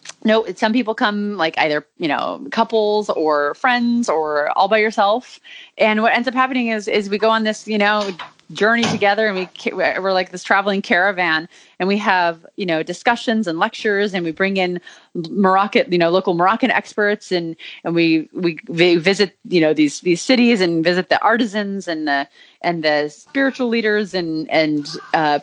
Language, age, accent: English, 30-49, American